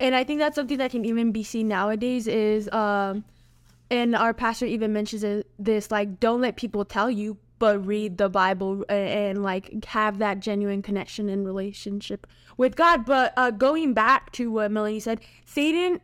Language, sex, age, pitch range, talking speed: English, female, 10-29, 210-250 Hz, 185 wpm